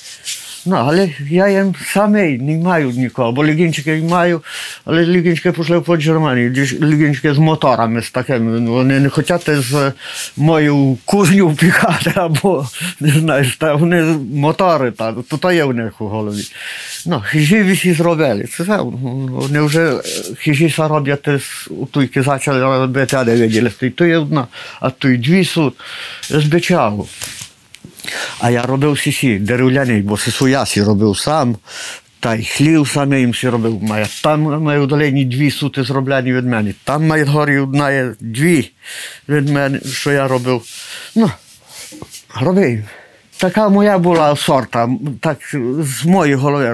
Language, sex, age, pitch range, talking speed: Ukrainian, male, 50-69, 125-165 Hz, 140 wpm